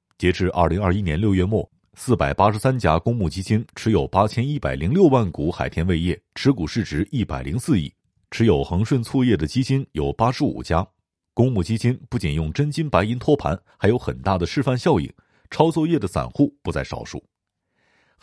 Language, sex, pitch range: Chinese, male, 90-125 Hz